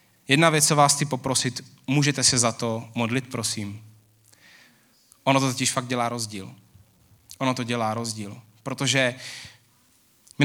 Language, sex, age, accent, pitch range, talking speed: Czech, male, 30-49, native, 110-140 Hz, 140 wpm